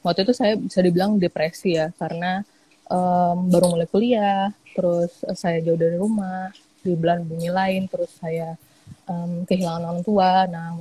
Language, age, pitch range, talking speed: Indonesian, 20-39, 175-215 Hz, 150 wpm